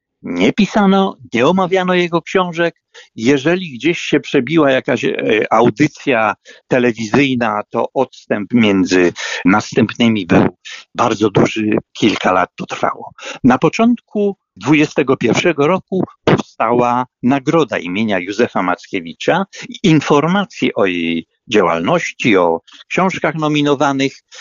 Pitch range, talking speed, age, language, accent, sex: 115-185 Hz, 100 wpm, 60-79, Polish, native, male